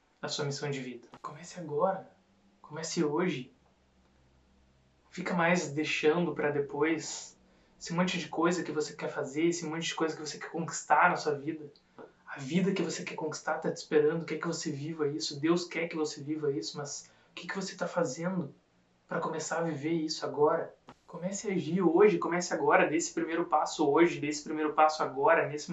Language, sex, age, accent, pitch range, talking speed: Portuguese, male, 20-39, Brazilian, 150-175 Hz, 190 wpm